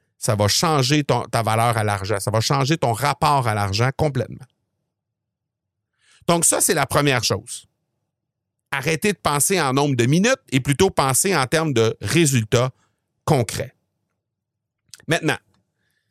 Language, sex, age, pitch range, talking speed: French, male, 50-69, 115-155 Hz, 140 wpm